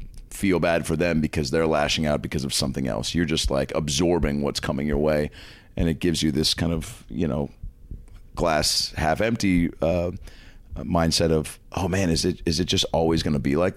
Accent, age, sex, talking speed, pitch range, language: American, 30-49, male, 205 wpm, 75-90 Hz, English